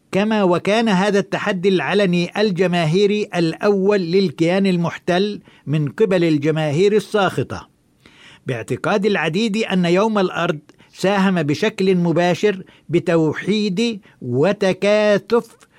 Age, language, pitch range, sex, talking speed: 50-69, Arabic, 160-200 Hz, male, 85 wpm